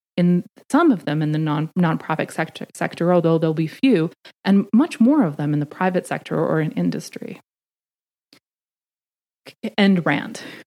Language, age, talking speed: English, 30-49, 155 wpm